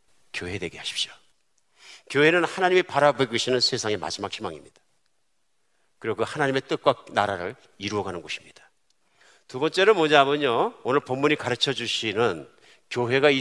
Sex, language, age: male, Korean, 50-69